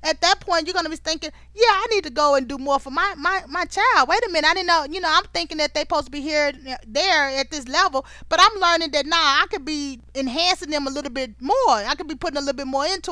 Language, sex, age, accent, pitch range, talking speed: English, female, 20-39, American, 270-335 Hz, 295 wpm